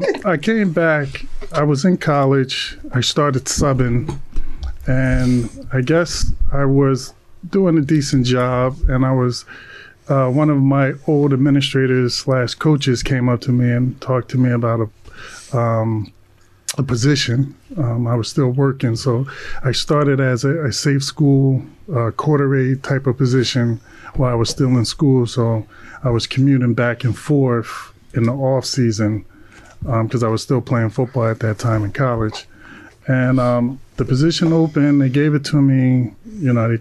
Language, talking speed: English, 170 wpm